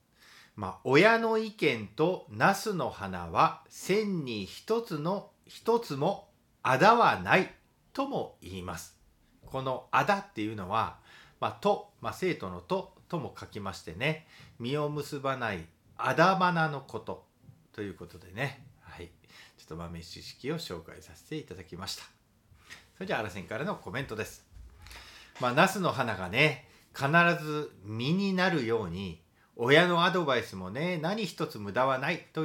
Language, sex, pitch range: Japanese, male, 95-155 Hz